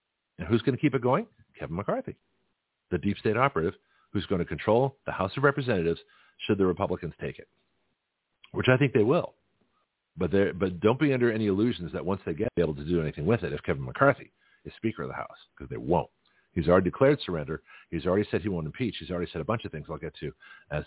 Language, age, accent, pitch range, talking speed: English, 50-69, American, 85-120 Hz, 235 wpm